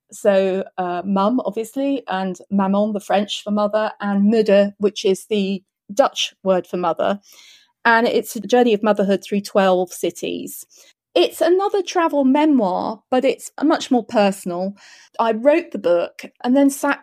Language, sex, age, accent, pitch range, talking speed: English, female, 30-49, British, 195-235 Hz, 155 wpm